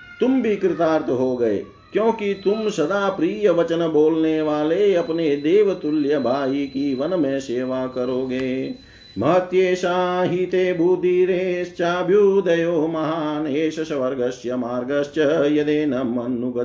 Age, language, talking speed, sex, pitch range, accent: 50-69, Hindi, 80 wpm, male, 125-180 Hz, native